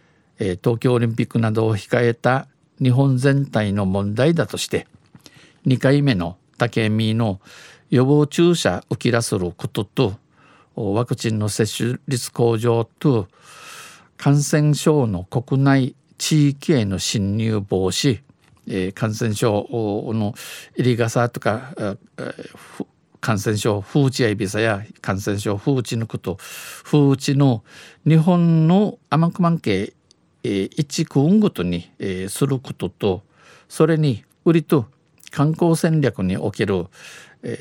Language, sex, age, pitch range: Japanese, male, 50-69, 105-145 Hz